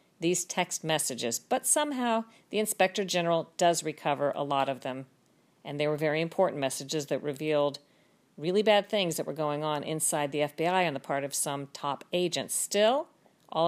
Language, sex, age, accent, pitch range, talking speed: English, female, 50-69, American, 155-195 Hz, 180 wpm